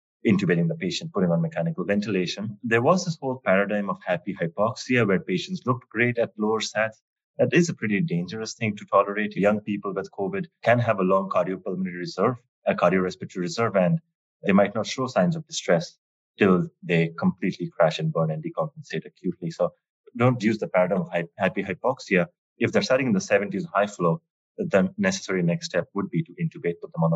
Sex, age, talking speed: male, 30-49, 190 wpm